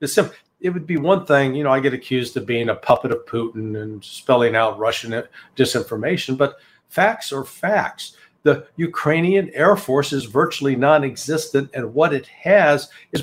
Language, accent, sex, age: English, American, male, 60-79